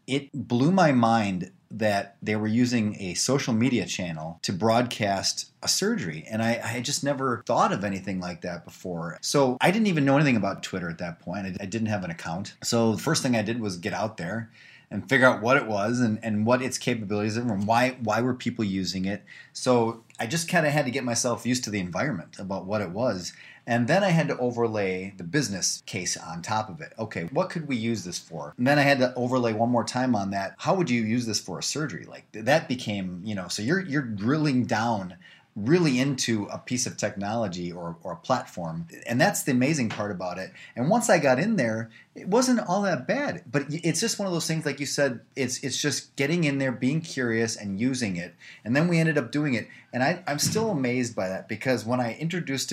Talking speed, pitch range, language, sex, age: 235 wpm, 100-135 Hz, English, male, 30-49